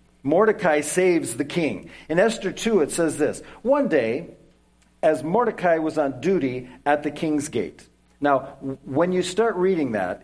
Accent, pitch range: American, 130-180 Hz